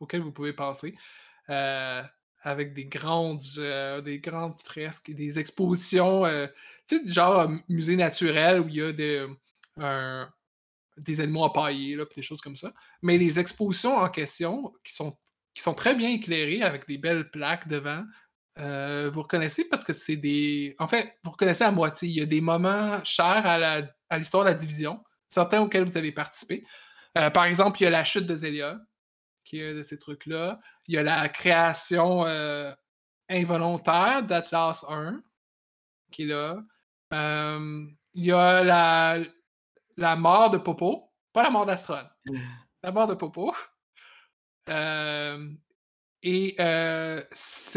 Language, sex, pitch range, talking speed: French, male, 150-185 Hz, 160 wpm